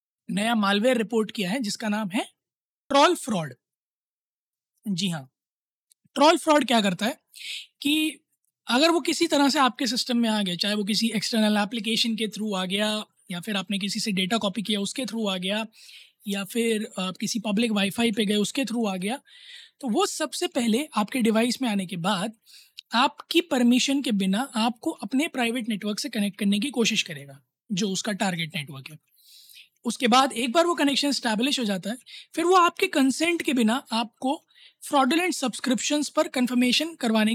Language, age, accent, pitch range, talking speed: Hindi, 20-39, native, 210-285 Hz, 180 wpm